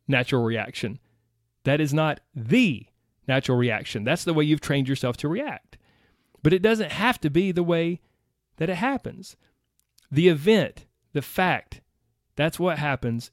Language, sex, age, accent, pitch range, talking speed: English, male, 30-49, American, 120-155 Hz, 155 wpm